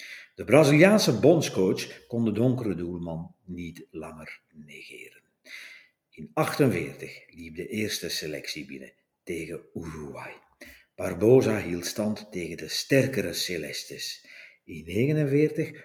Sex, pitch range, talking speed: male, 85-125 Hz, 105 wpm